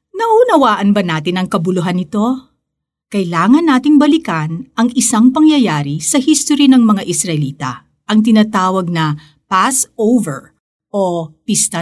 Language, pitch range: Filipino, 170-255 Hz